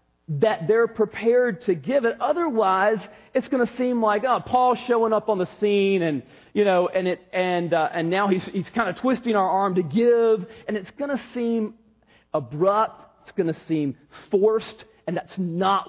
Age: 40-59